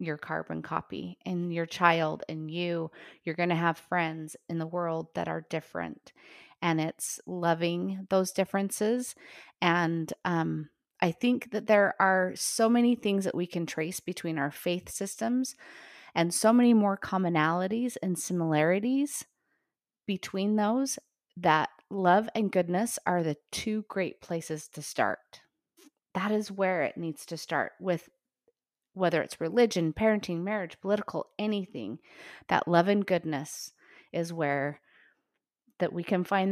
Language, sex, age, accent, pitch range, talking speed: English, female, 30-49, American, 160-205 Hz, 145 wpm